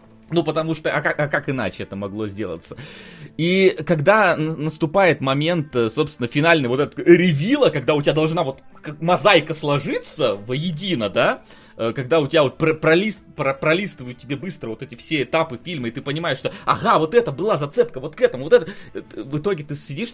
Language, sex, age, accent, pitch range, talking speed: Russian, male, 20-39, native, 110-160 Hz, 175 wpm